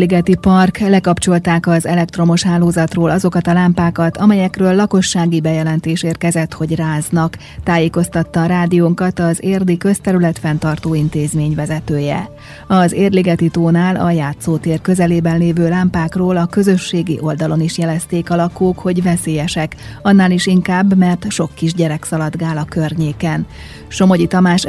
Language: Hungarian